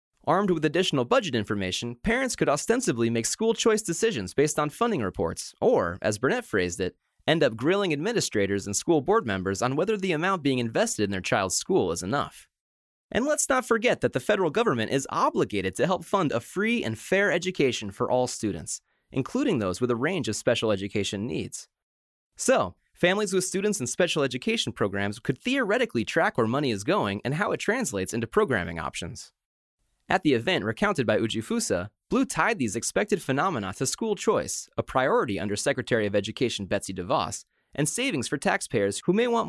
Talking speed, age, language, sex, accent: 185 wpm, 30-49, English, male, American